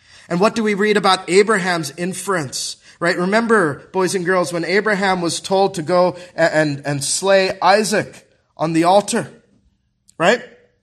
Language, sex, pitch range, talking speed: English, male, 160-200 Hz, 155 wpm